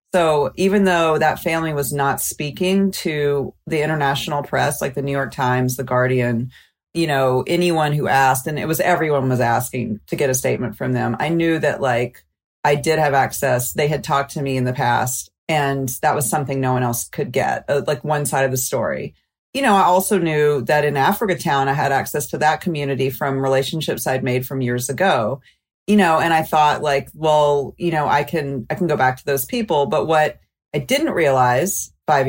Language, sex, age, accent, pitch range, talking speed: English, female, 40-59, American, 130-160 Hz, 210 wpm